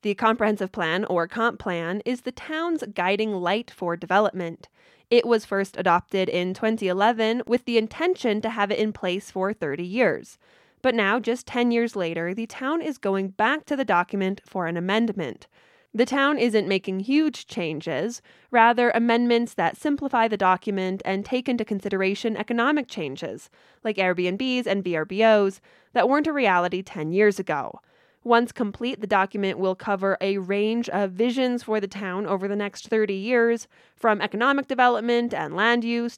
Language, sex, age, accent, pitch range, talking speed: English, female, 20-39, American, 190-240 Hz, 165 wpm